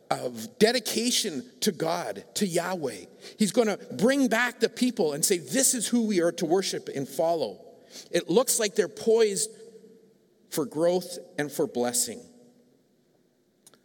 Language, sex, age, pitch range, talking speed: English, male, 50-69, 155-220 Hz, 145 wpm